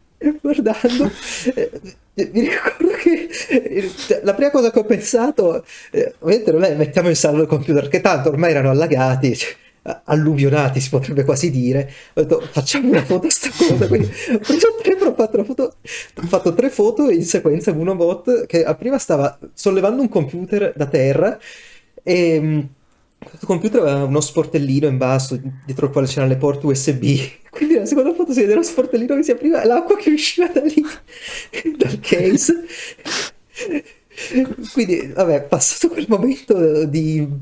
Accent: native